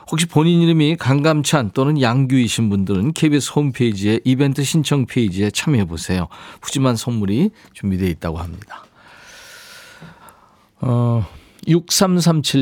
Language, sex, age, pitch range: Korean, male, 40-59, 105-155 Hz